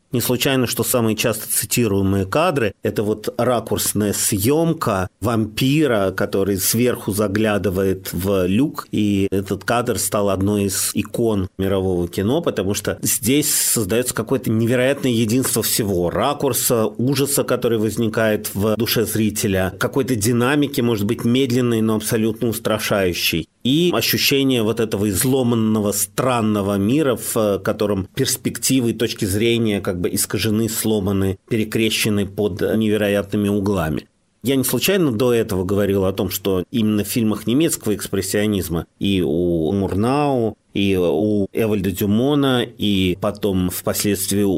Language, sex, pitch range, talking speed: Russian, male, 100-120 Hz, 125 wpm